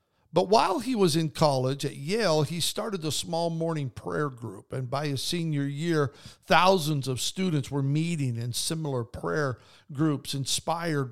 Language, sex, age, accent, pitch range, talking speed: English, male, 50-69, American, 135-160 Hz, 160 wpm